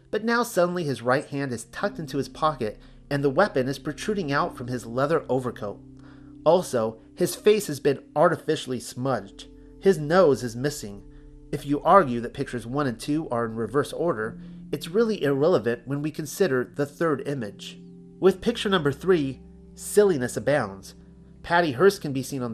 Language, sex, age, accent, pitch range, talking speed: English, male, 40-59, American, 125-170 Hz, 175 wpm